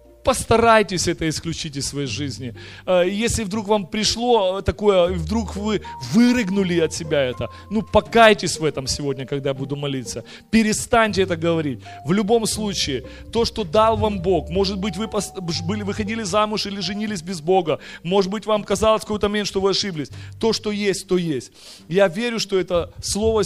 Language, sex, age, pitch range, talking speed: Russian, male, 30-49, 160-210 Hz, 165 wpm